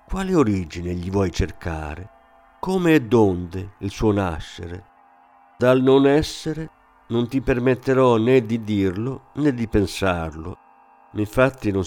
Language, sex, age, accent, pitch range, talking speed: Italian, male, 50-69, native, 90-130 Hz, 125 wpm